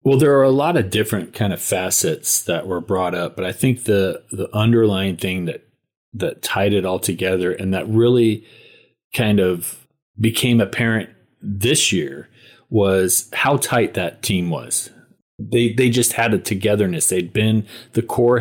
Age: 40-59